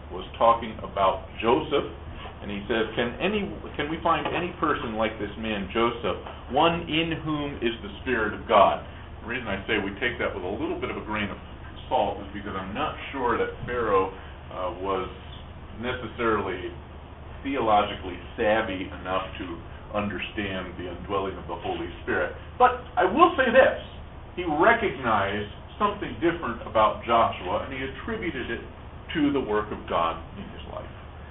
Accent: American